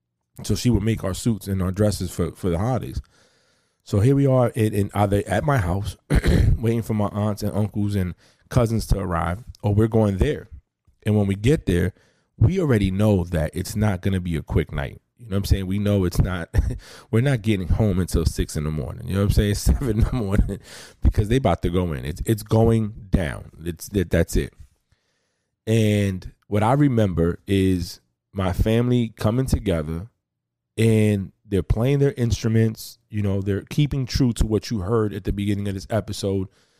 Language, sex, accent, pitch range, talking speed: English, male, American, 95-110 Hz, 200 wpm